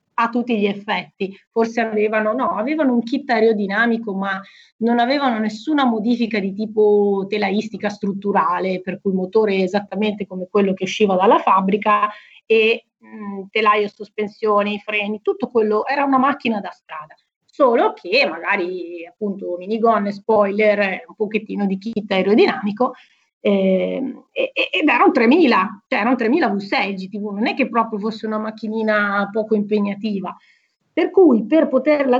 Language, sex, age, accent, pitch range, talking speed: Italian, female, 30-49, native, 200-240 Hz, 145 wpm